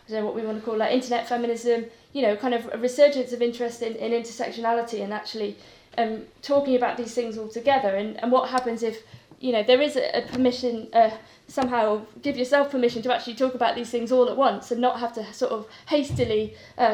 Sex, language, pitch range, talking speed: female, English, 220-250 Hz, 220 wpm